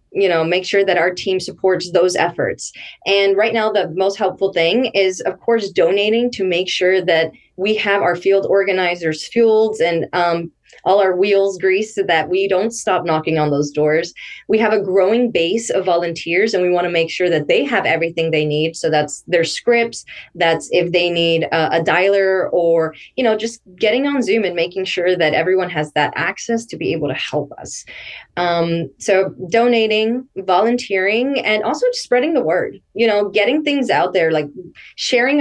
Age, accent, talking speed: 20-39, American, 195 wpm